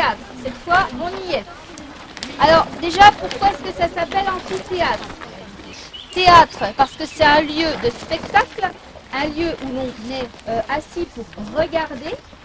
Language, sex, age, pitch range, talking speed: French, female, 40-59, 285-365 Hz, 145 wpm